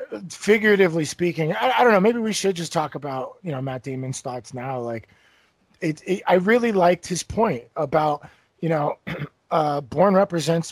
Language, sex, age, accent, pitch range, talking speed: English, male, 30-49, American, 125-160 Hz, 180 wpm